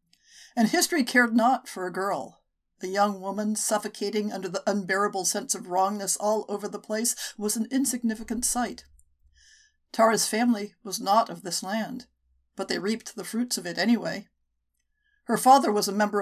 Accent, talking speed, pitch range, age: American, 165 wpm, 195-235 Hz, 60-79